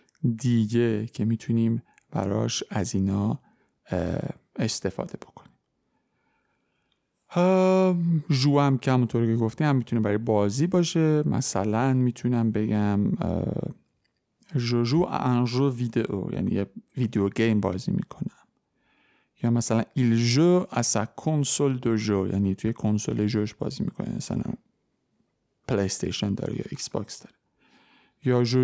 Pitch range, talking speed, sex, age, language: 110-140 Hz, 115 wpm, male, 50-69, Persian